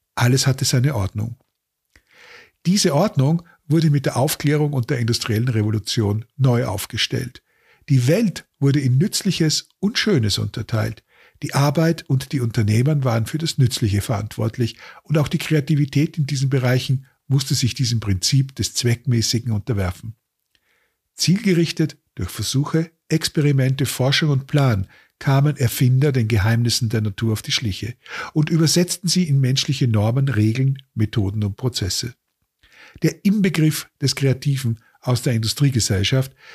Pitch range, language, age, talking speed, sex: 115-150 Hz, German, 50-69, 135 wpm, male